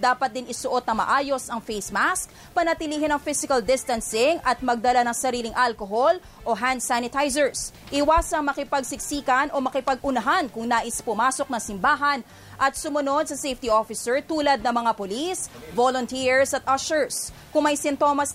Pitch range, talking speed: 250-290 Hz, 145 wpm